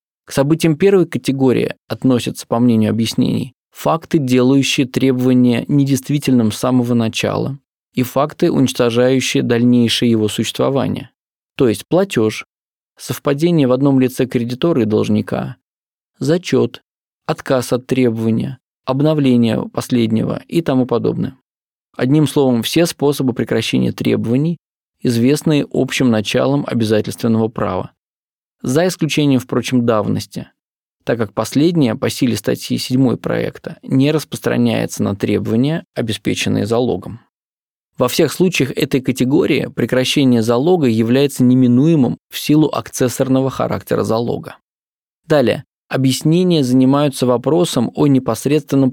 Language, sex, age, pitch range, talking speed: Russian, male, 20-39, 120-145 Hz, 110 wpm